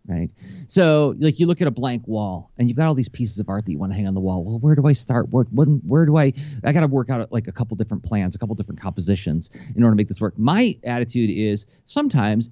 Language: English